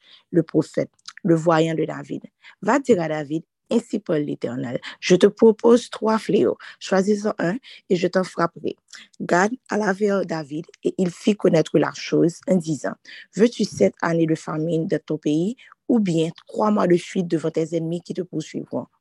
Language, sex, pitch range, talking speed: French, female, 165-210 Hz, 180 wpm